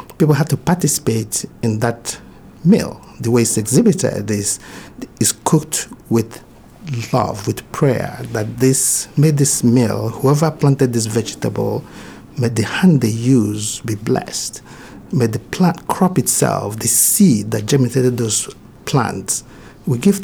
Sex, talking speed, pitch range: male, 140 wpm, 115-145 Hz